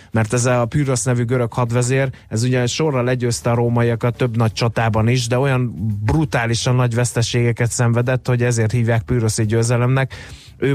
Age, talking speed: 30-49, 160 wpm